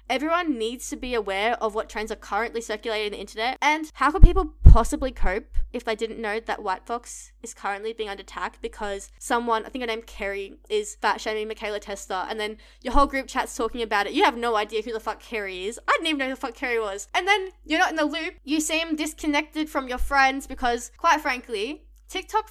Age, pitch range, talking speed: 10-29, 220-295 Hz, 235 wpm